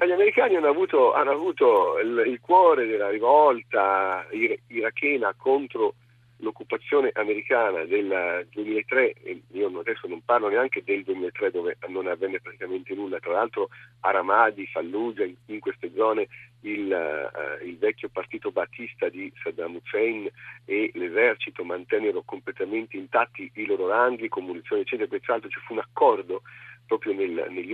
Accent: native